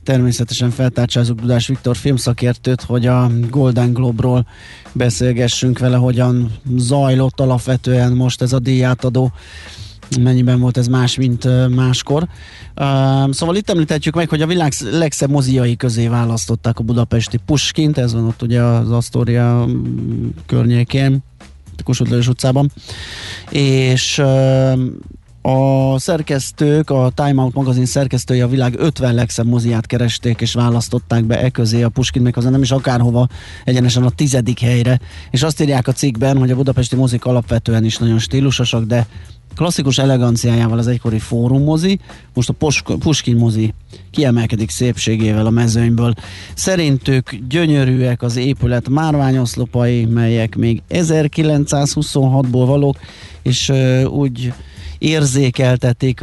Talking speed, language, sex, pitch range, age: 125 wpm, Hungarian, male, 115-135 Hz, 20-39